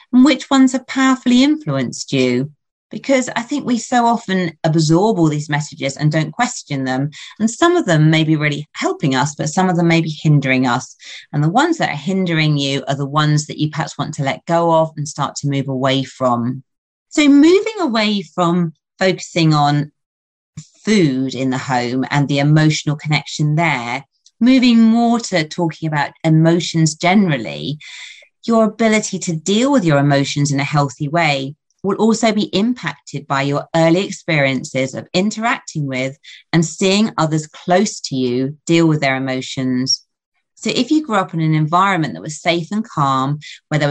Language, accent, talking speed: English, British, 180 wpm